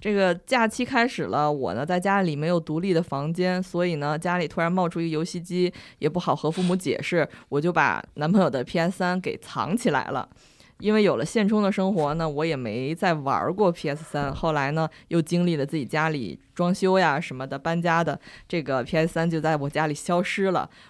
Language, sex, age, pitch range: Chinese, female, 20-39, 145-180 Hz